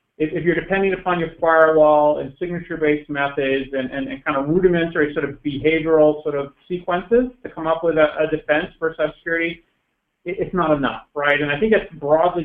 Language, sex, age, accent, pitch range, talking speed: English, male, 40-59, American, 140-165 Hz, 195 wpm